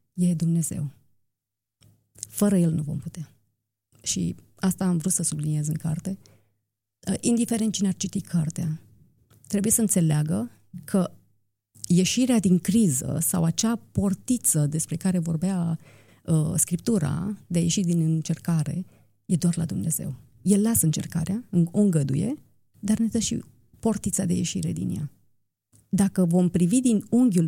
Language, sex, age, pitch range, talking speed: Romanian, female, 30-49, 150-195 Hz, 140 wpm